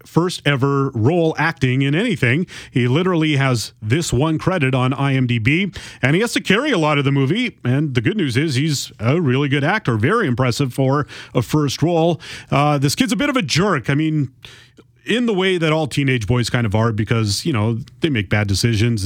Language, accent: English, American